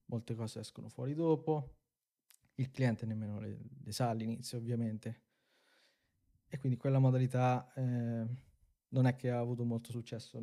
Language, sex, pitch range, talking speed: Italian, male, 115-130 Hz, 145 wpm